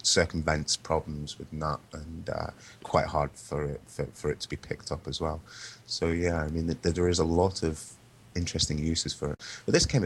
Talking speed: 220 wpm